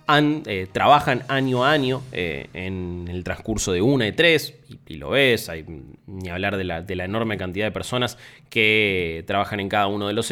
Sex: male